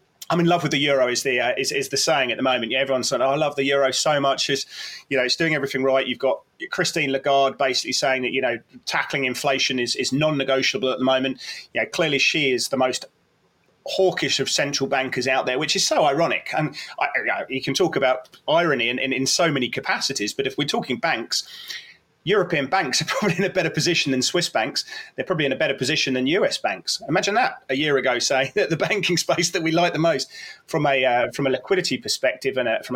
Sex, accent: male, British